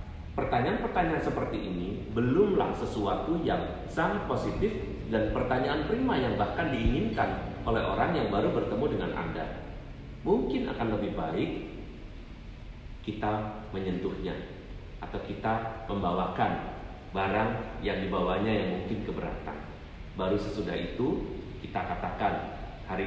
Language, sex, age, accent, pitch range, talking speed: Indonesian, male, 40-59, native, 95-135 Hz, 110 wpm